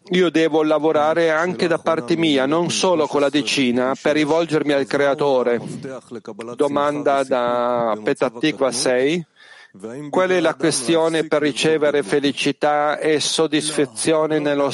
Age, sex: 40-59, male